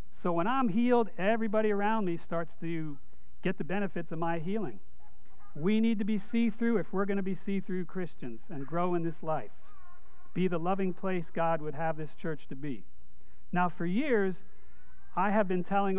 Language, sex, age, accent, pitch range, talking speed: English, male, 50-69, American, 145-190 Hz, 190 wpm